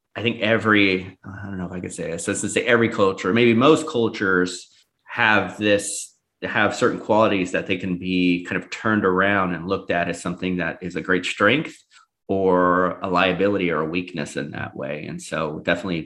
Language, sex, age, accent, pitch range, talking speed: English, male, 30-49, American, 90-110 Hz, 200 wpm